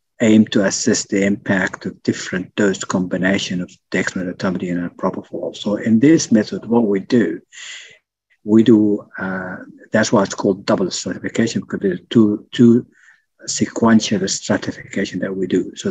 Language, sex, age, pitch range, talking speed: English, male, 50-69, 100-120 Hz, 145 wpm